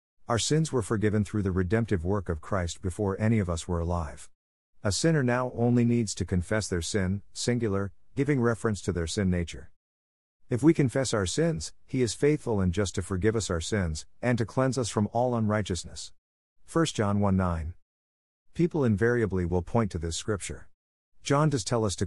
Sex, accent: male, American